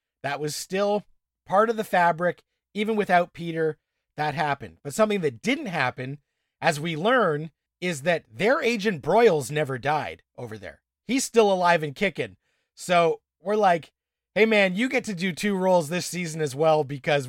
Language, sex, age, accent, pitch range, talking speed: English, male, 30-49, American, 150-200 Hz, 175 wpm